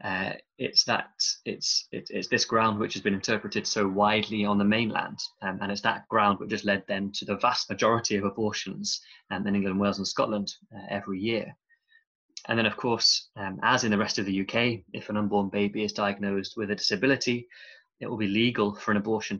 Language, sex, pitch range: English, male, 105-120 Hz